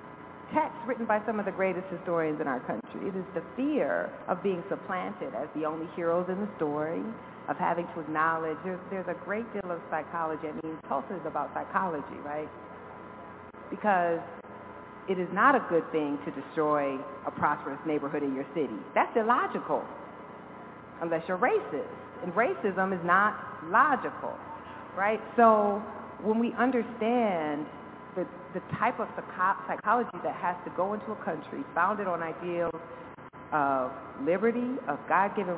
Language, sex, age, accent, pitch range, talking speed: English, female, 40-59, American, 155-210 Hz, 155 wpm